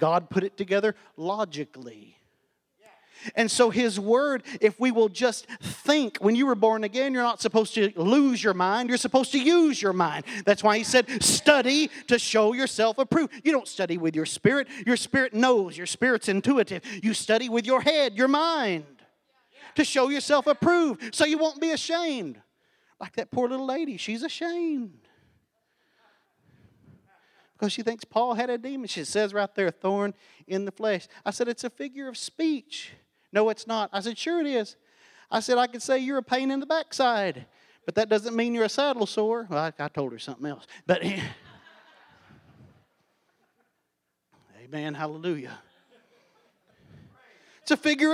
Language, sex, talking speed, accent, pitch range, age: English, male, 170 wpm, American, 200-270 Hz, 40-59